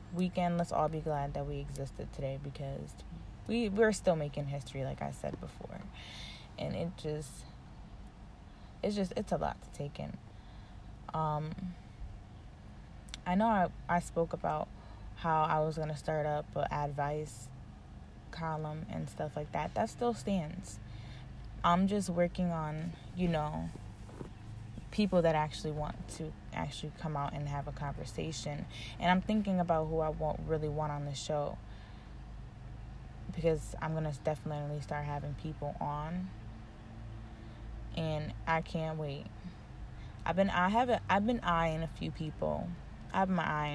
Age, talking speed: 20-39, 150 wpm